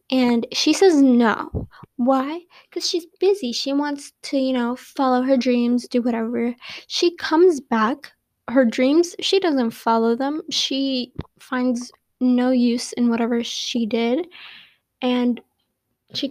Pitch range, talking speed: 235-290 Hz, 135 wpm